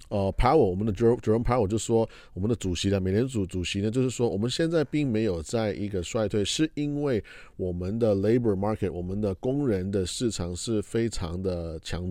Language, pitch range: Chinese, 95-115 Hz